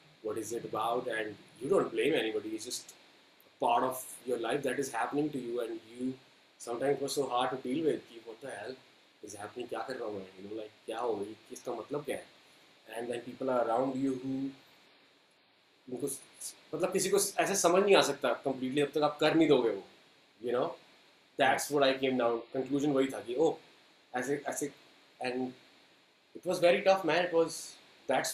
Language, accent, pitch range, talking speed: Hindi, native, 115-150 Hz, 210 wpm